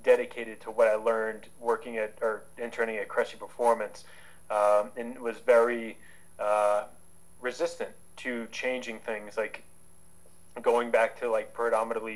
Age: 20-39